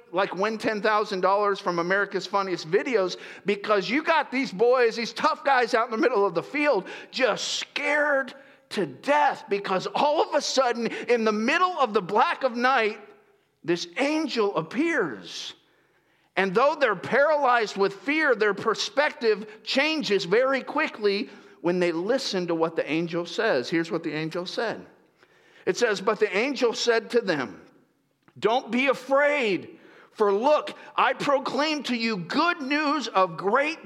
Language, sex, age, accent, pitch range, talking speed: English, male, 50-69, American, 205-290 Hz, 155 wpm